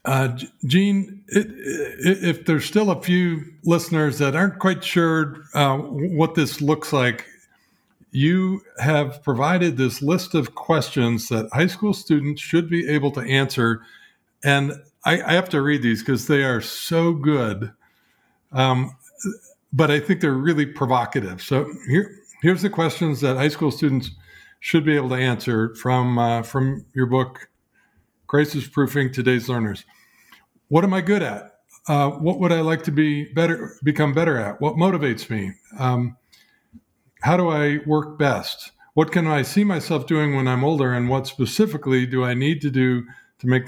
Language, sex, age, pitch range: English, male, 50-69, 130-165 Hz